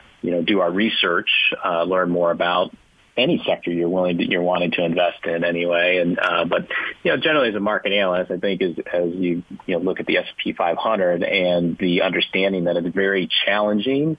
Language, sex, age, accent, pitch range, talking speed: English, male, 30-49, American, 85-100 Hz, 215 wpm